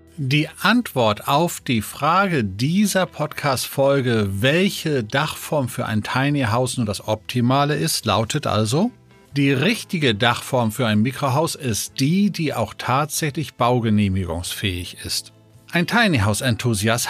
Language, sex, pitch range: German, male, 110-160 Hz